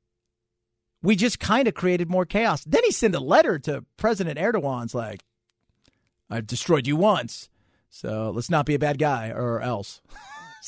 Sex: male